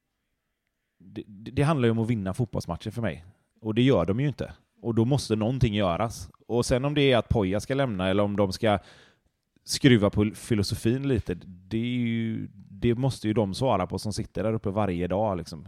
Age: 30-49